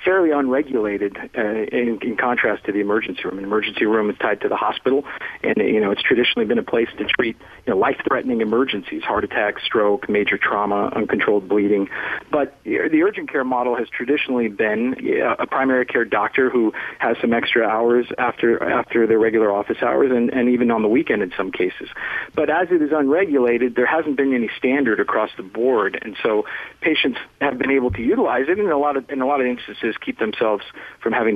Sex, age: male, 40-59